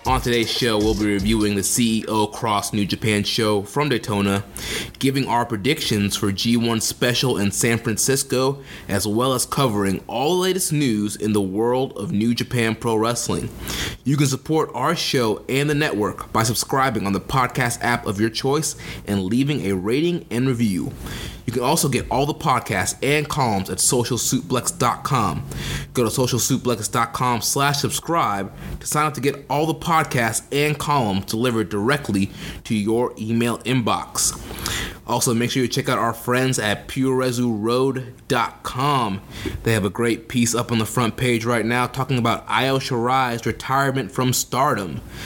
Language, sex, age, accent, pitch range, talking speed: English, male, 20-39, American, 110-135 Hz, 165 wpm